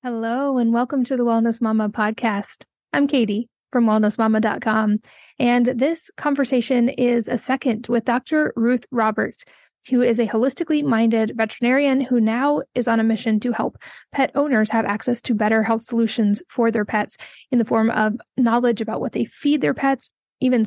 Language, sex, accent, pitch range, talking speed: English, female, American, 220-250 Hz, 170 wpm